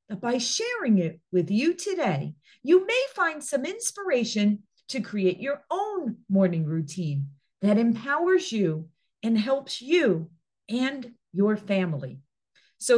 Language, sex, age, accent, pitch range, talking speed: English, female, 50-69, American, 185-275 Hz, 130 wpm